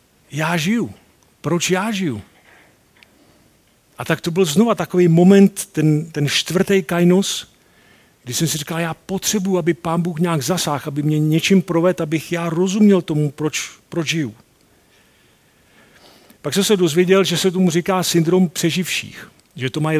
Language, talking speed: Czech, 155 wpm